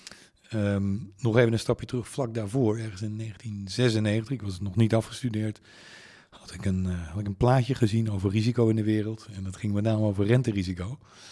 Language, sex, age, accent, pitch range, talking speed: Dutch, male, 40-59, Dutch, 100-120 Hz, 185 wpm